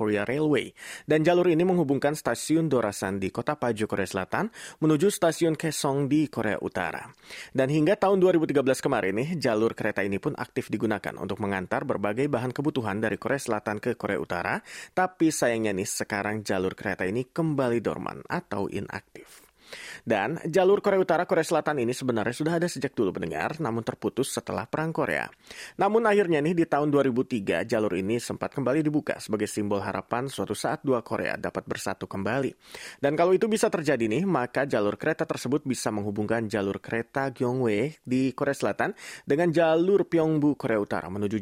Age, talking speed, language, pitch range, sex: 30-49, 165 wpm, Malay, 110-155 Hz, male